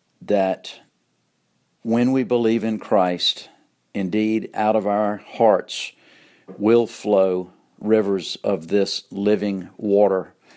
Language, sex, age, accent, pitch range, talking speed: English, male, 50-69, American, 95-105 Hz, 100 wpm